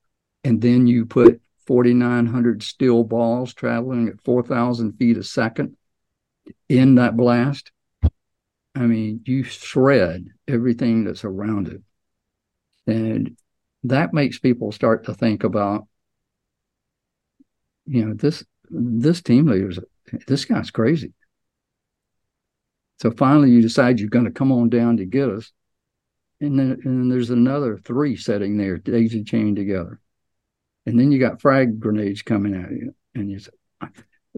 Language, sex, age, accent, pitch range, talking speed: English, male, 50-69, American, 105-125 Hz, 140 wpm